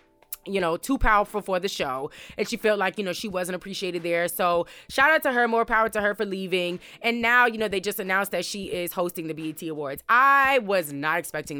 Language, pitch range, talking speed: English, 165-210 Hz, 240 wpm